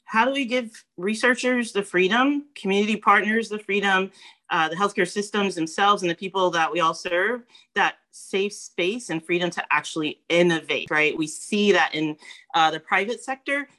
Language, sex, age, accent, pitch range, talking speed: English, female, 30-49, American, 160-215 Hz, 175 wpm